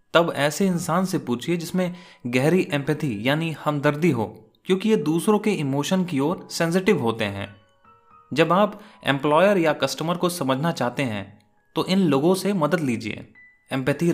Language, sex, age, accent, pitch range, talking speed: Hindi, male, 30-49, native, 120-180 Hz, 155 wpm